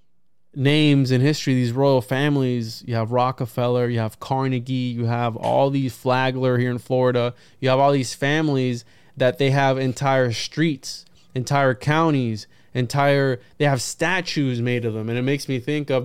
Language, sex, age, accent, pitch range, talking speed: English, male, 20-39, American, 120-145 Hz, 170 wpm